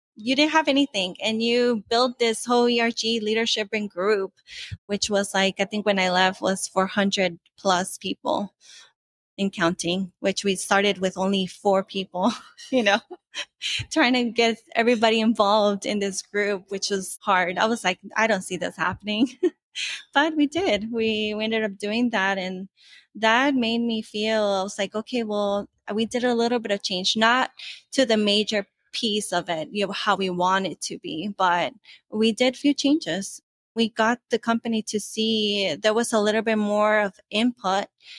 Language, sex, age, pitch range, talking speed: English, female, 20-39, 195-230 Hz, 180 wpm